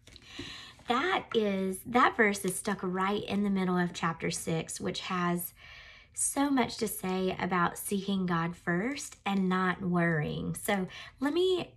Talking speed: 150 wpm